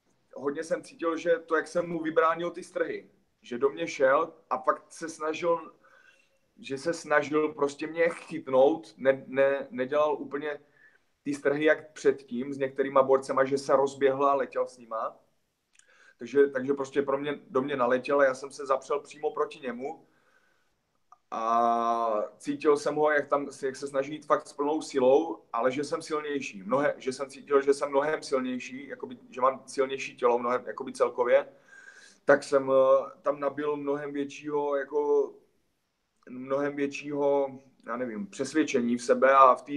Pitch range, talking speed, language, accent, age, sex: 135-155 Hz, 165 wpm, Czech, native, 30-49, male